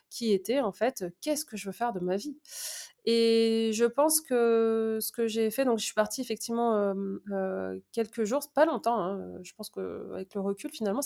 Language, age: French, 20-39